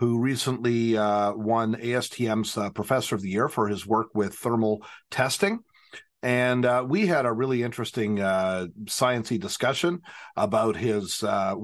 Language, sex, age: English, male, 50-69